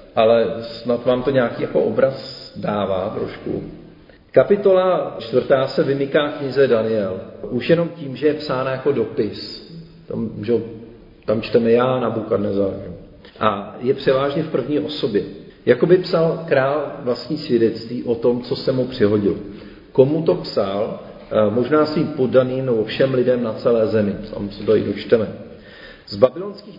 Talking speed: 145 wpm